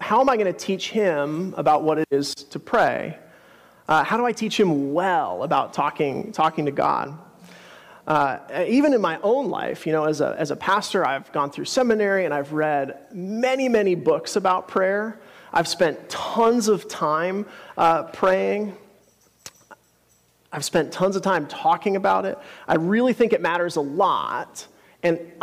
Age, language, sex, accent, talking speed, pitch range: 30-49, English, male, American, 170 wpm, 155-210 Hz